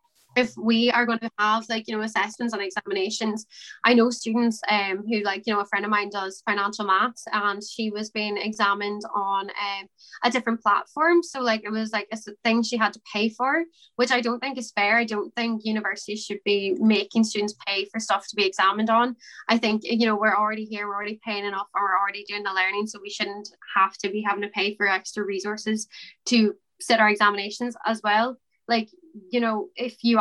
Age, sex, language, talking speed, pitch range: 10-29, female, English, 220 wpm, 205-230 Hz